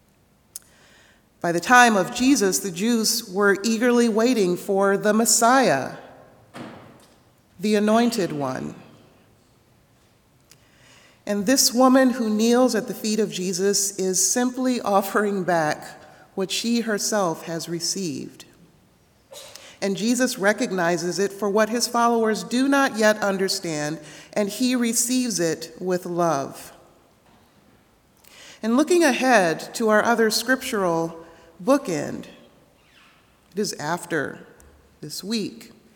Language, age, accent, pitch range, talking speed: English, 40-59, American, 180-230 Hz, 110 wpm